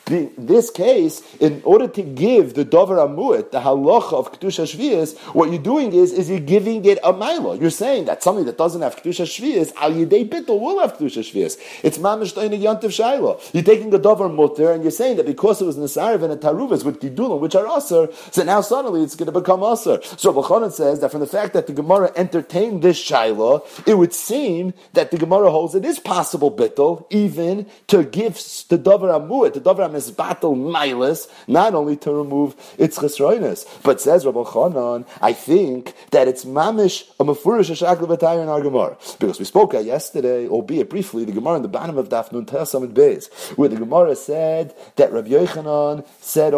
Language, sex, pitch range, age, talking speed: English, male, 150-225 Hz, 40-59, 190 wpm